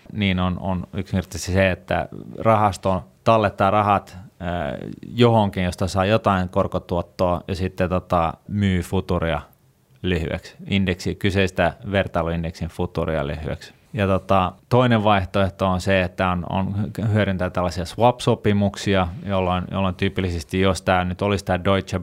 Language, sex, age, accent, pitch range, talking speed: Finnish, male, 30-49, native, 90-100 Hz, 130 wpm